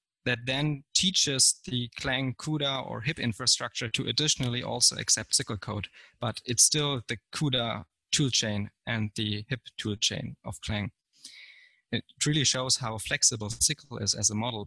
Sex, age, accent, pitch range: male, 20-39, German, 115-130 Hz